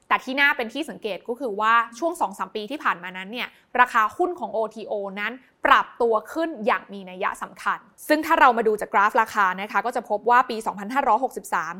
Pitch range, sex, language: 205-275 Hz, female, Thai